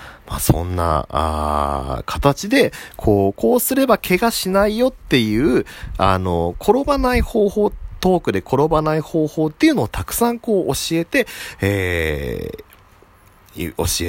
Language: Japanese